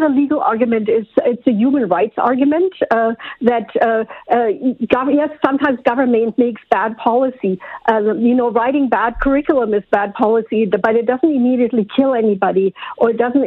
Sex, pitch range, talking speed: female, 215-260 Hz, 160 wpm